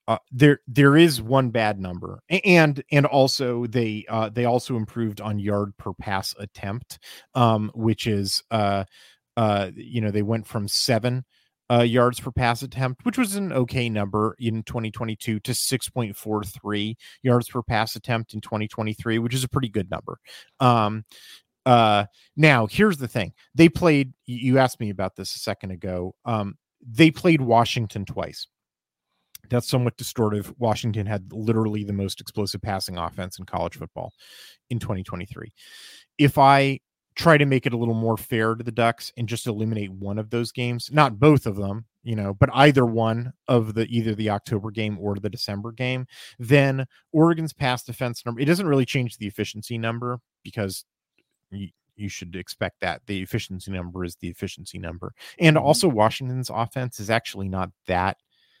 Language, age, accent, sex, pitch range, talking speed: English, 30-49, American, male, 105-130 Hz, 170 wpm